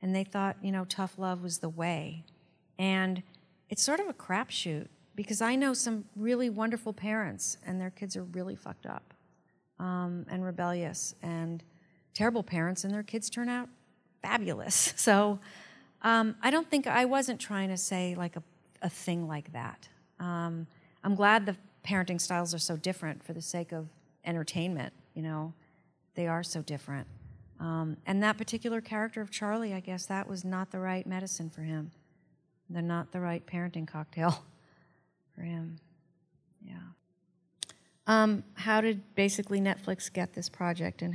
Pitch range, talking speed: 170-205 Hz, 165 wpm